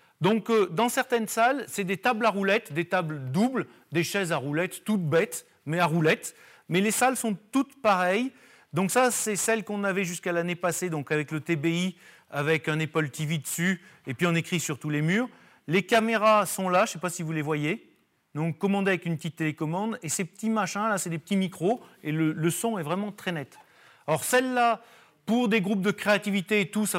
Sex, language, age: male, French, 40-59